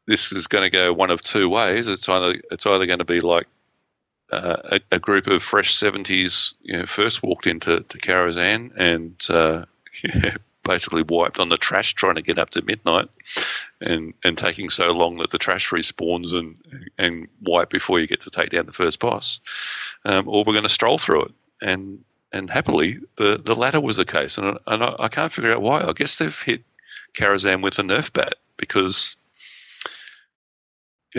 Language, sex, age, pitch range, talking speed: English, male, 40-59, 85-100 Hz, 190 wpm